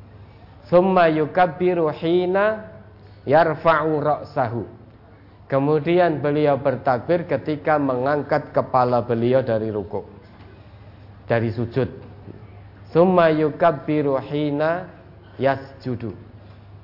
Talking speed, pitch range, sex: 55 wpm, 105-145 Hz, male